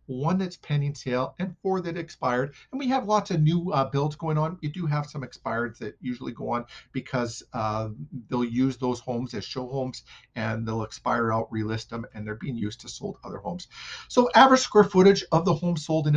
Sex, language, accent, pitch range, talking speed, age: male, English, American, 125-155 Hz, 220 wpm, 50-69